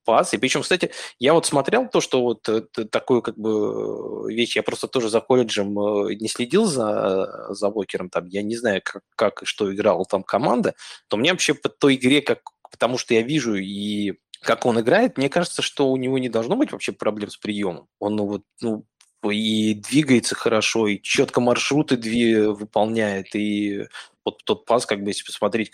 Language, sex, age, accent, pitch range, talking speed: Russian, male, 20-39, native, 105-130 Hz, 185 wpm